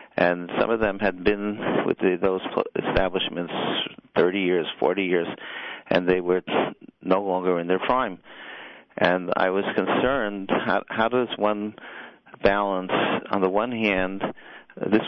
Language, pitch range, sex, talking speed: English, 90-100 Hz, male, 145 wpm